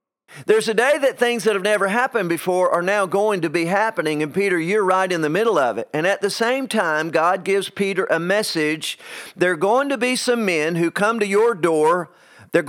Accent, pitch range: American, 165-220 Hz